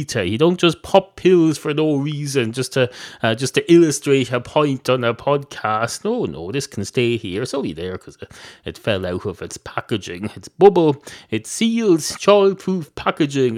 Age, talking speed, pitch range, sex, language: 30-49, 185 wpm, 115-155 Hz, male, English